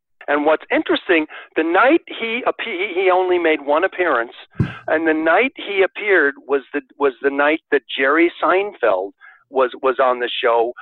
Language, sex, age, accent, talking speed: English, male, 50-69, American, 160 wpm